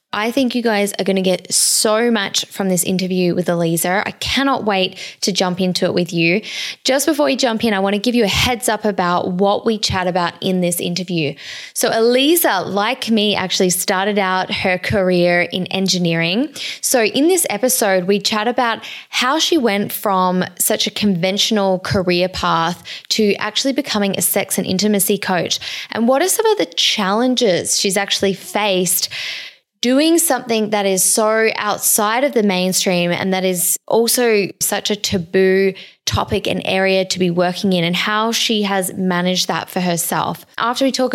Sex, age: female, 10-29